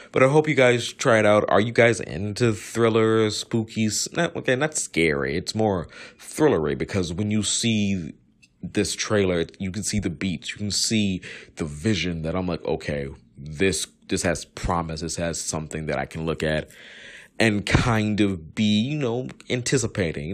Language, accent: English, American